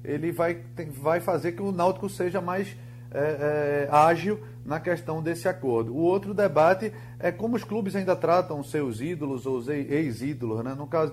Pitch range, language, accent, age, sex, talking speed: 130-180 Hz, Portuguese, Brazilian, 30-49, male, 160 wpm